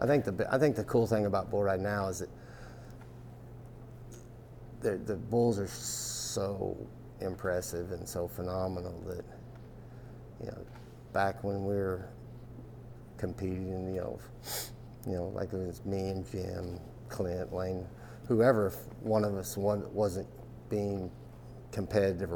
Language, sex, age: English, male, 50-69